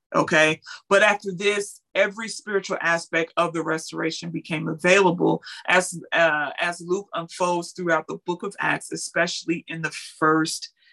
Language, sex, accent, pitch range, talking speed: English, female, American, 165-195 Hz, 145 wpm